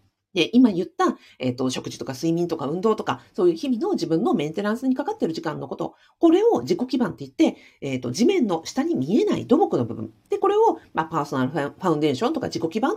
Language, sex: Japanese, female